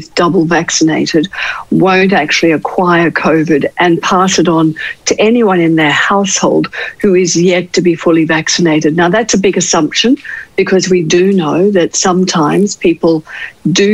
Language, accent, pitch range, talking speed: English, Australian, 160-200 Hz, 150 wpm